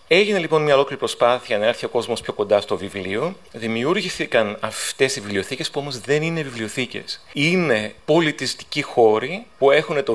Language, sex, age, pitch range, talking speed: Greek, male, 30-49, 115-155 Hz, 165 wpm